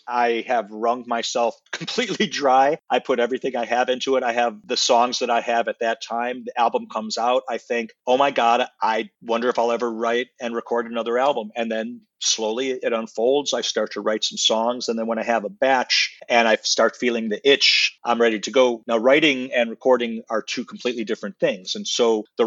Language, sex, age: English, male, 40-59